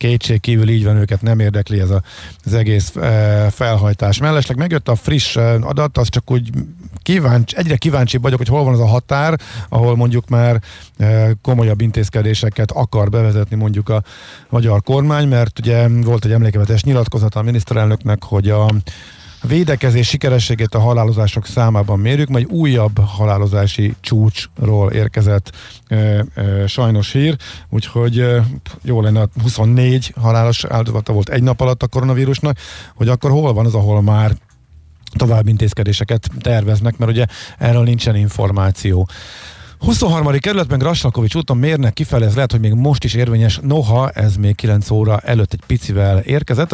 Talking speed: 155 wpm